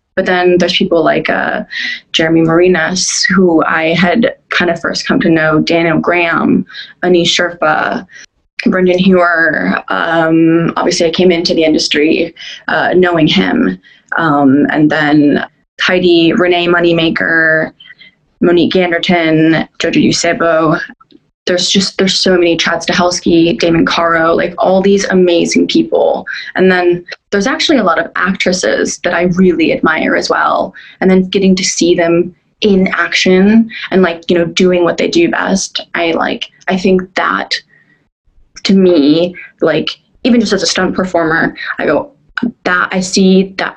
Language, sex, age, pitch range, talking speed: English, female, 20-39, 170-190 Hz, 150 wpm